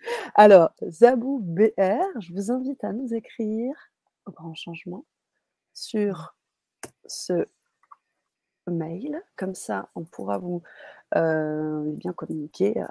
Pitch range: 165-205 Hz